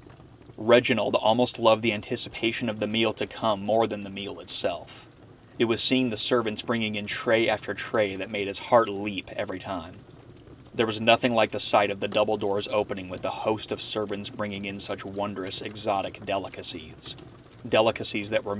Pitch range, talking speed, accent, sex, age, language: 100-115 Hz, 185 wpm, American, male, 30-49, English